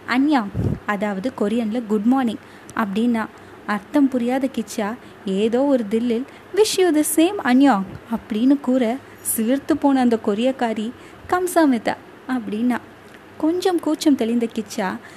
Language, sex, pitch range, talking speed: Tamil, female, 220-280 Hz, 115 wpm